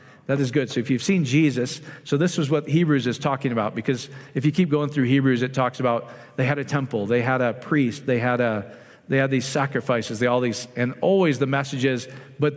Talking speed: 235 wpm